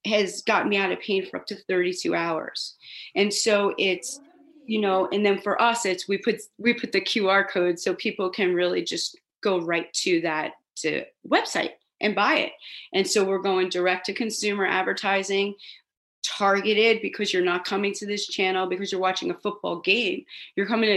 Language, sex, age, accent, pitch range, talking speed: English, female, 30-49, American, 185-225 Hz, 190 wpm